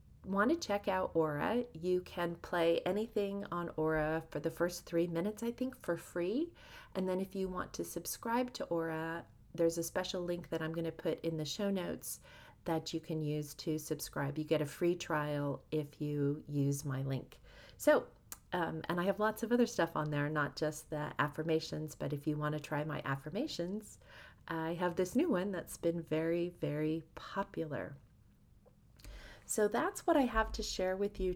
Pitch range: 155-185 Hz